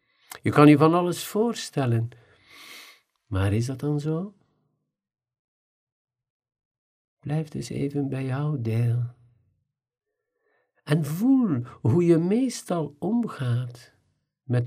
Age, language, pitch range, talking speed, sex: 50-69, Dutch, 120-155 Hz, 100 wpm, male